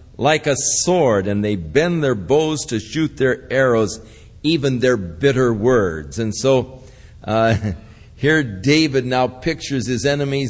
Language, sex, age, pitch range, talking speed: English, male, 50-69, 115-165 Hz, 145 wpm